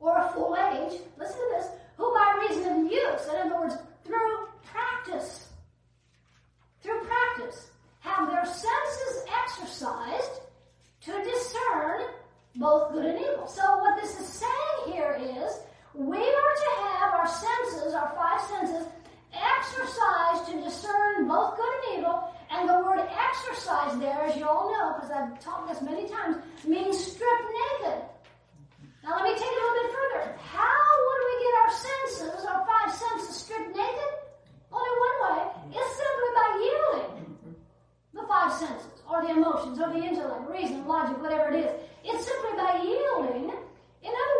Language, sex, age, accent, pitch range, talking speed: English, female, 40-59, American, 310-455 Hz, 160 wpm